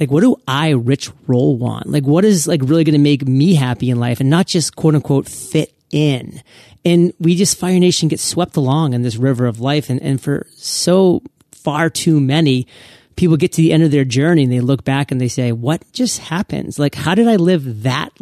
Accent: American